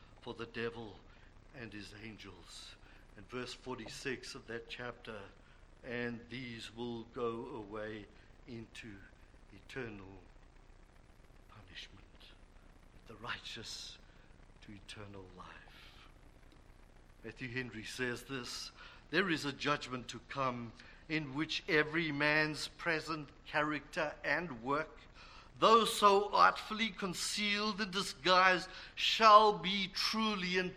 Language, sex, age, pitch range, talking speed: English, male, 60-79, 115-195 Hz, 105 wpm